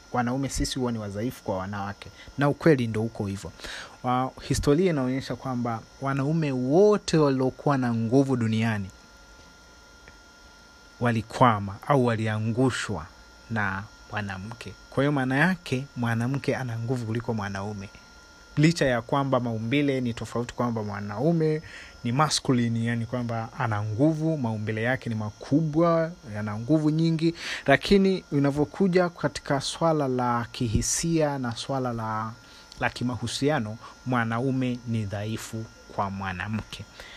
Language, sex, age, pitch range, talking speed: Swahili, male, 30-49, 110-145 Hz, 115 wpm